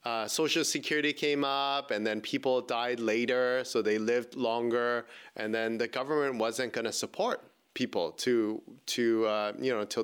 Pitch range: 115-155 Hz